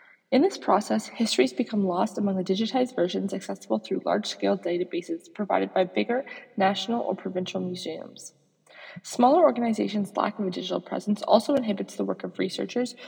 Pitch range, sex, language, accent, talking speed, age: 195-250 Hz, female, English, American, 155 wpm, 20-39